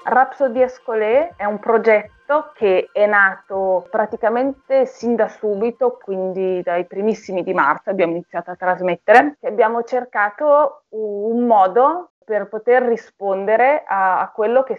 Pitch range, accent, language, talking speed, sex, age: 185-235 Hz, native, Italian, 130 wpm, female, 30-49